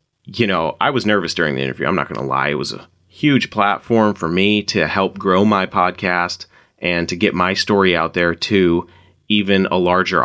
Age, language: 30-49, English